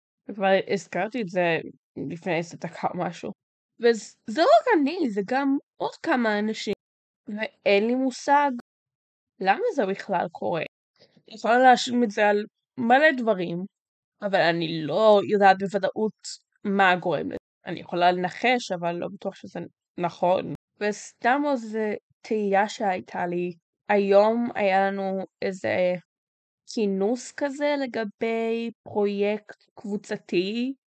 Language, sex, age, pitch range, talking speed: Hebrew, female, 10-29, 190-230 Hz, 120 wpm